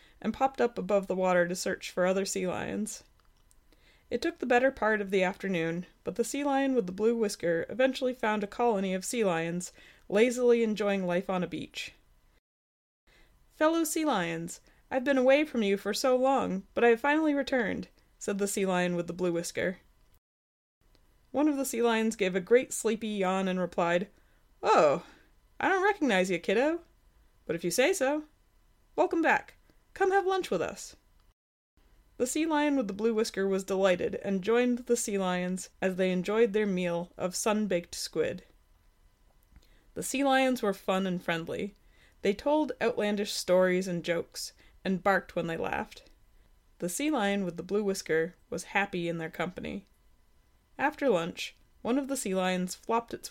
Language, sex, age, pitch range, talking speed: English, female, 20-39, 175-240 Hz, 175 wpm